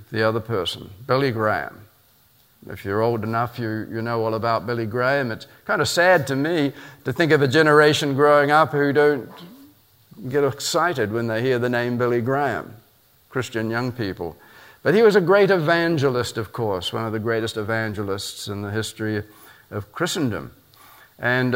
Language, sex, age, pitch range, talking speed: English, male, 50-69, 110-140 Hz, 180 wpm